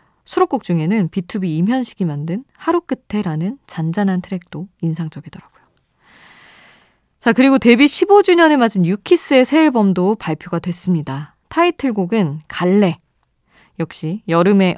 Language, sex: Korean, female